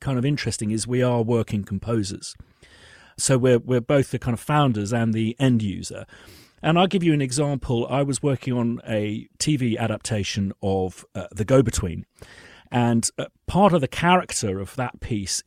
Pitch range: 110-145 Hz